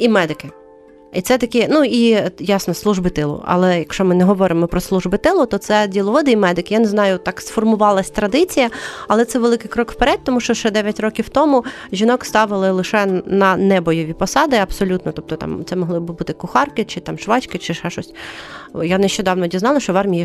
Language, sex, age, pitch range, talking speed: Ukrainian, female, 30-49, 180-220 Hz, 190 wpm